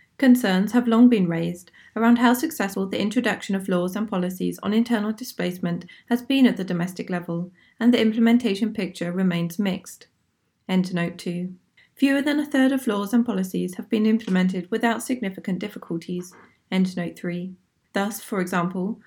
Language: English